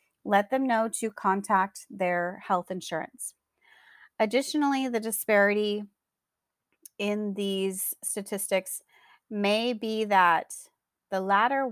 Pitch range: 185-225 Hz